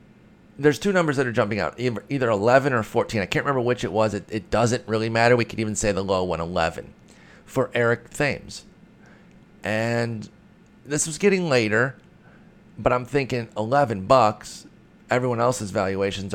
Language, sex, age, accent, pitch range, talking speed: English, male, 30-49, American, 95-125 Hz, 170 wpm